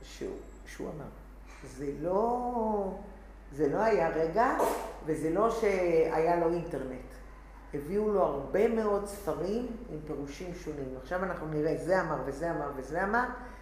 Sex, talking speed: female, 135 wpm